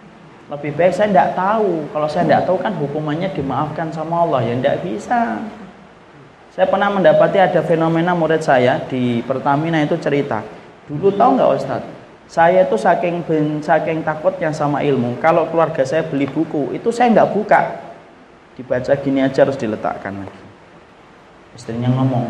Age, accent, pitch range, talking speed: 20-39, native, 125-175 Hz, 155 wpm